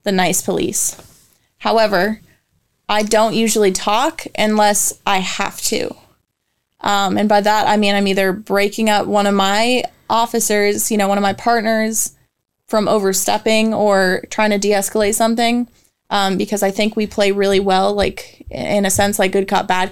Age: 20-39